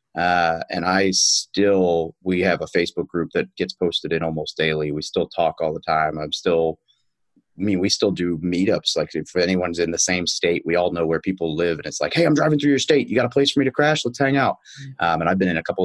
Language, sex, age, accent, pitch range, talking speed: English, male, 30-49, American, 85-105 Hz, 260 wpm